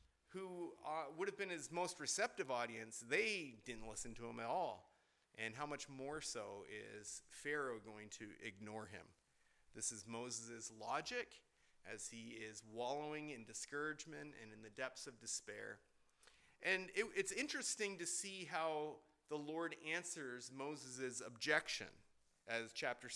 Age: 30-49